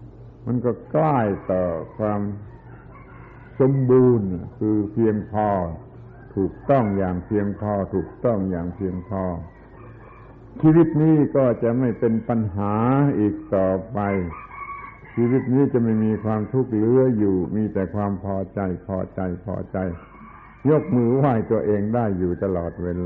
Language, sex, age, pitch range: Thai, male, 70-89, 95-120 Hz